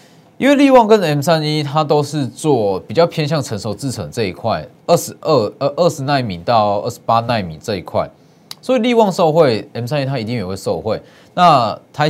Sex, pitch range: male, 115-160 Hz